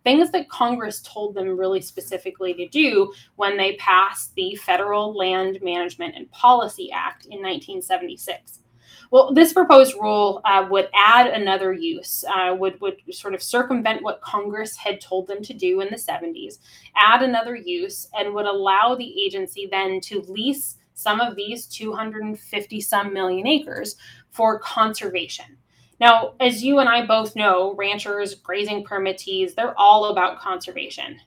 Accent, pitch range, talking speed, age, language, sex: American, 190-245 Hz, 150 wpm, 10-29, English, female